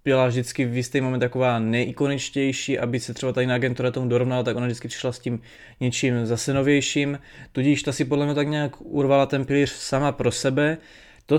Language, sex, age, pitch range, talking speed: Czech, male, 20-39, 125-140 Hz, 195 wpm